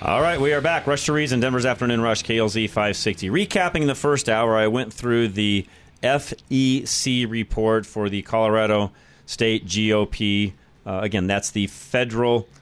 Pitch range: 100-120 Hz